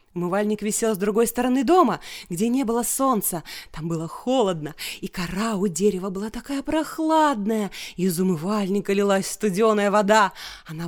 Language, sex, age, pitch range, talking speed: Russian, female, 20-39, 190-275 Hz, 145 wpm